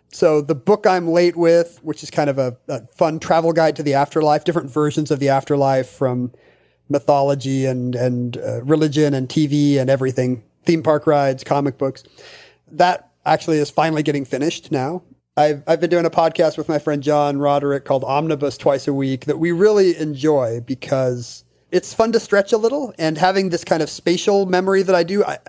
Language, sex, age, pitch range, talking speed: English, male, 30-49, 135-170 Hz, 195 wpm